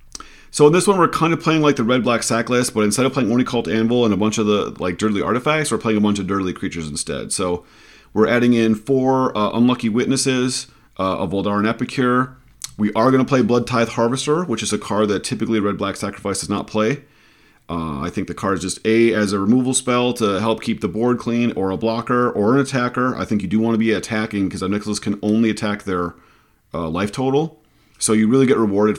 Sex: male